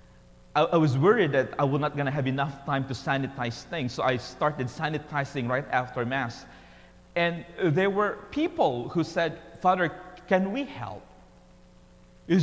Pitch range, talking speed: 105-175 Hz, 160 wpm